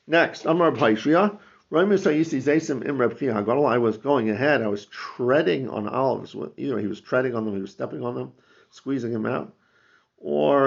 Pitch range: 115-150 Hz